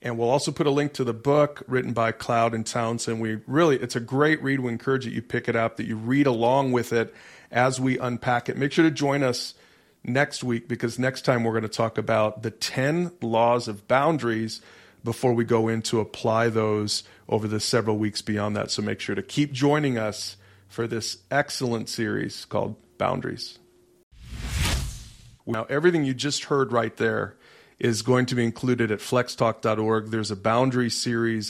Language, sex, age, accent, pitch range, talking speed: English, male, 40-59, American, 110-130 Hz, 190 wpm